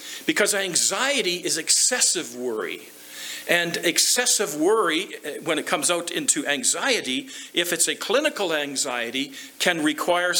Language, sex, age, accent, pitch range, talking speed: English, male, 50-69, American, 130-190 Hz, 120 wpm